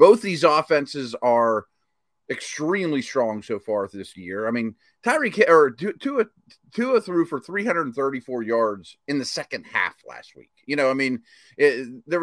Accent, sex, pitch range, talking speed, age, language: American, male, 120-175 Hz, 145 wpm, 30-49, English